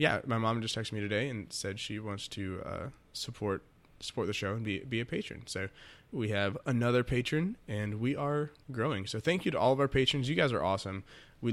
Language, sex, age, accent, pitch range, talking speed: English, male, 20-39, American, 105-135 Hz, 230 wpm